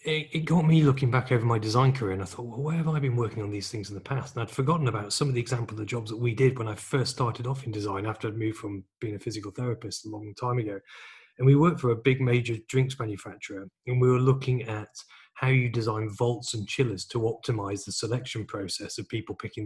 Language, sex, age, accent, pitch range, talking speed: English, male, 30-49, British, 105-130 Hz, 260 wpm